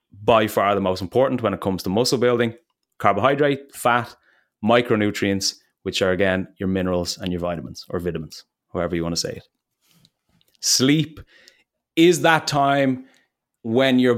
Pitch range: 95-120 Hz